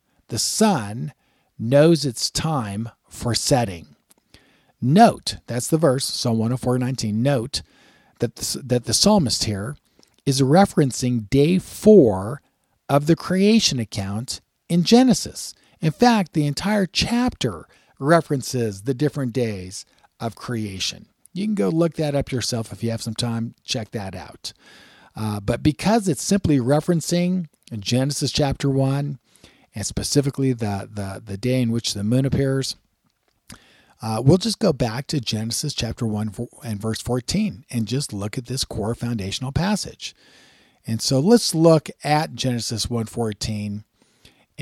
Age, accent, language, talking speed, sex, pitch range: 50-69, American, English, 140 wpm, male, 115-150 Hz